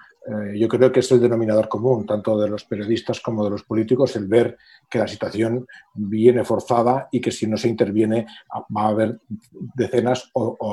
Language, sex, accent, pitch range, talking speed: Spanish, male, Spanish, 115-135 Hz, 190 wpm